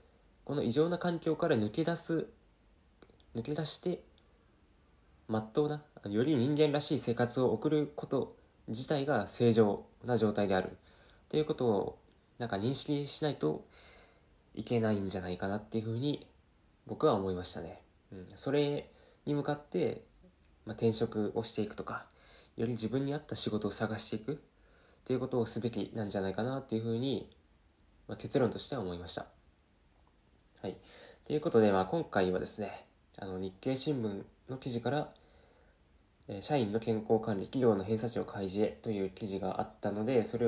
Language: Japanese